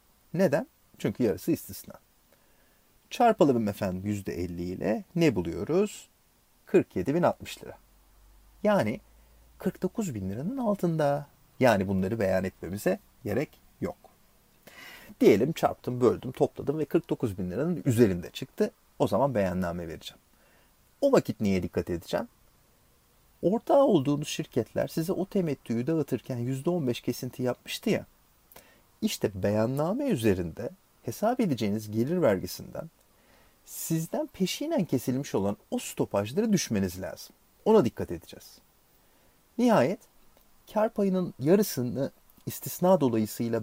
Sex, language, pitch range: male, Turkish, 105-175 Hz